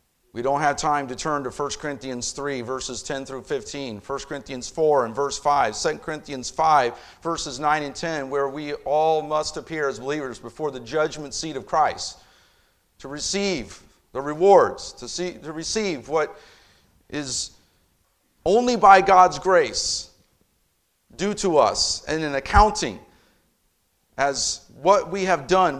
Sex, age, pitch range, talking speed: male, 40-59, 130-165 Hz, 150 wpm